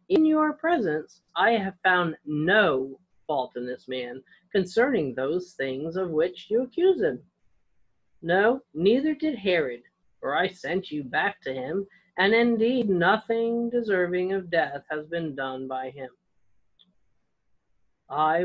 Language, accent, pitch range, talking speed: English, American, 150-215 Hz, 135 wpm